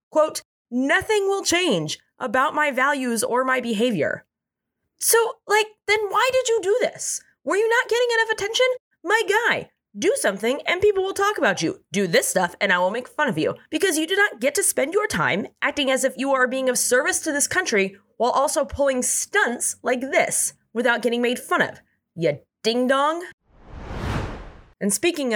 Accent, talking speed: American, 190 wpm